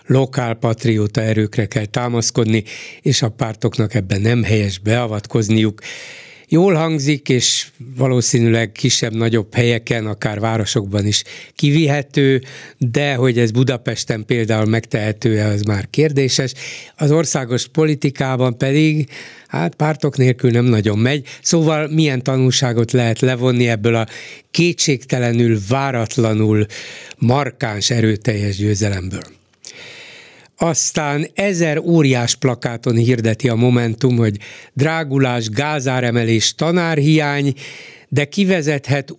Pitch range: 115-145 Hz